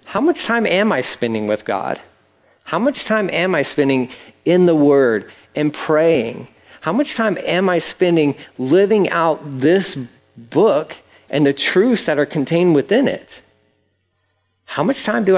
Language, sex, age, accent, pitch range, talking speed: English, male, 50-69, American, 130-190 Hz, 160 wpm